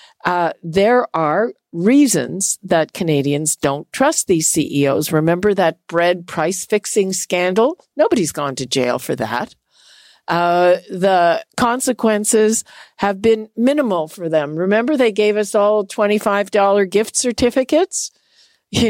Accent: American